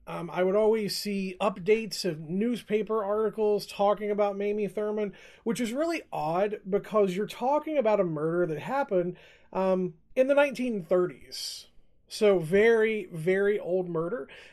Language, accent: English, American